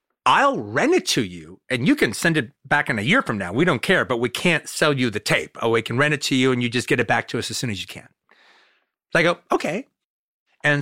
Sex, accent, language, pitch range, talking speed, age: male, American, English, 120-175 Hz, 285 wpm, 40-59